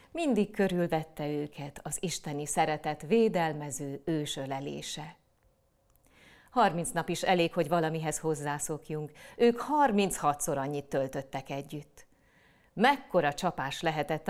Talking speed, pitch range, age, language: 100 wpm, 145-185 Hz, 30-49, Hungarian